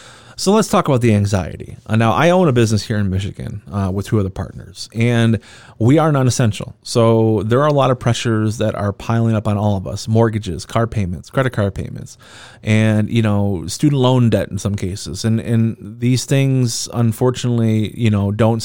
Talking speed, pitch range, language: 195 wpm, 105-125 Hz, English